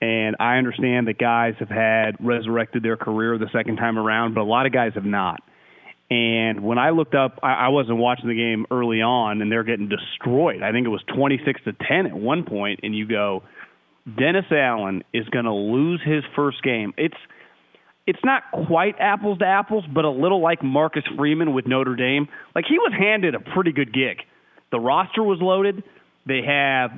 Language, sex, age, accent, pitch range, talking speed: English, male, 30-49, American, 120-170 Hz, 200 wpm